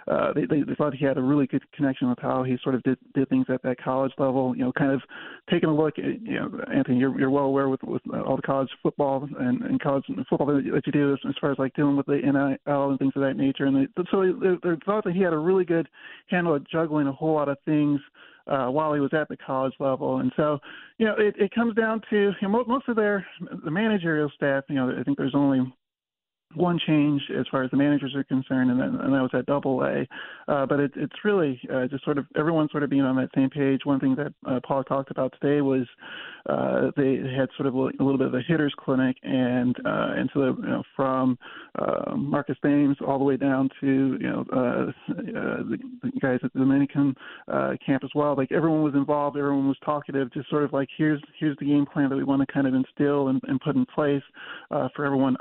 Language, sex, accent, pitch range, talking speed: English, male, American, 135-155 Hz, 250 wpm